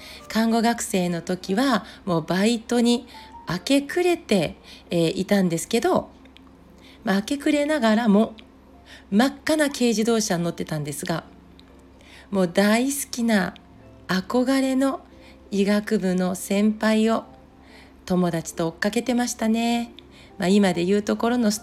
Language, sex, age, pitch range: Japanese, female, 40-59, 180-255 Hz